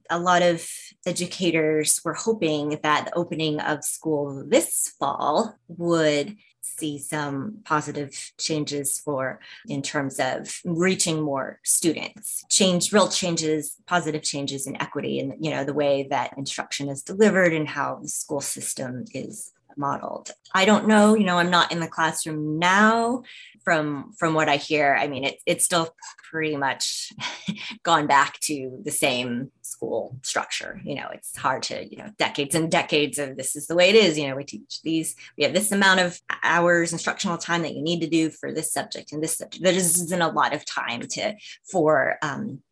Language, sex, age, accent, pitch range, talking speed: English, female, 20-39, American, 145-180 Hz, 180 wpm